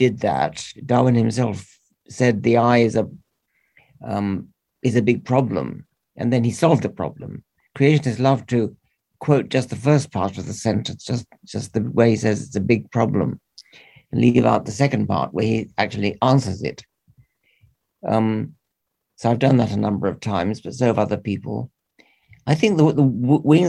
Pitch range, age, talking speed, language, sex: 110-135 Hz, 50-69, 180 wpm, English, male